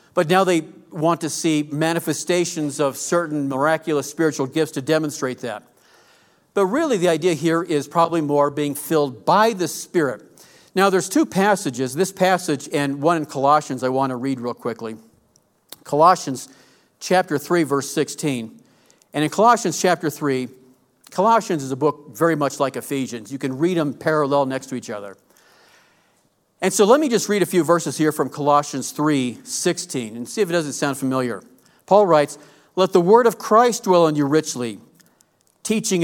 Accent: American